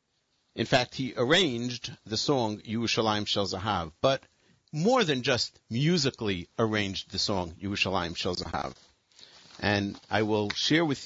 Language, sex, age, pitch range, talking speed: English, male, 50-69, 110-145 Hz, 135 wpm